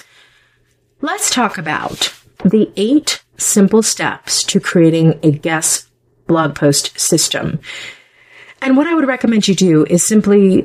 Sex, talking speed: female, 130 wpm